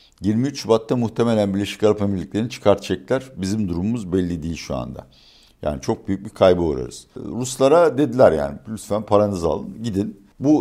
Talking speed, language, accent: 155 wpm, Turkish, native